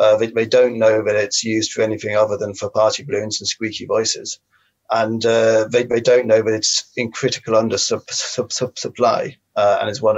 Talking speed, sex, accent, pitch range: 220 wpm, male, British, 110-135 Hz